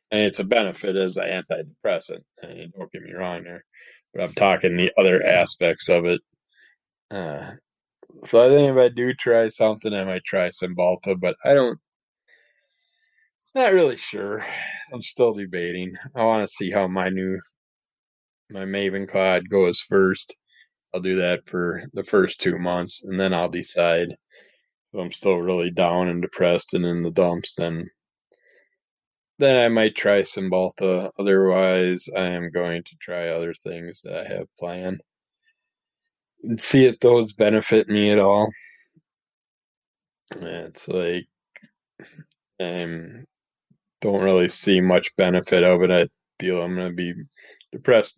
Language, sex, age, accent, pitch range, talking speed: English, male, 20-39, American, 90-100 Hz, 150 wpm